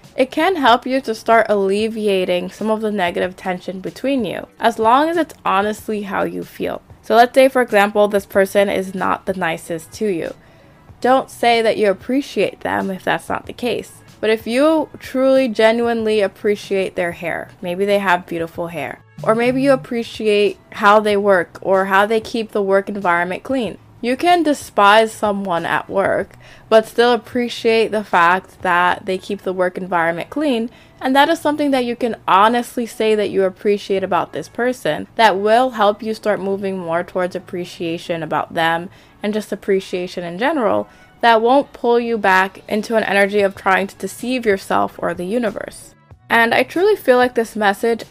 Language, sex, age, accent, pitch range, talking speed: English, female, 20-39, American, 190-235 Hz, 180 wpm